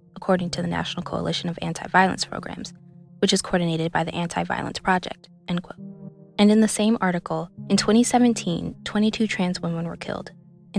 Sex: female